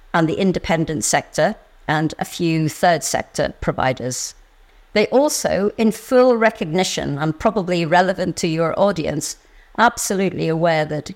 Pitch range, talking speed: 155-200 Hz, 130 wpm